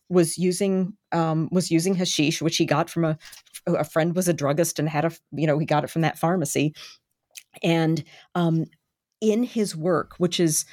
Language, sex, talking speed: English, female, 190 wpm